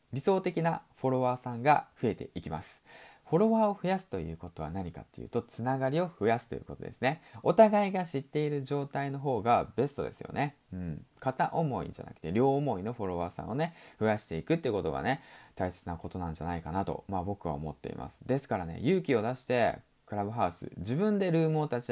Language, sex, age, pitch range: Japanese, male, 20-39, 100-165 Hz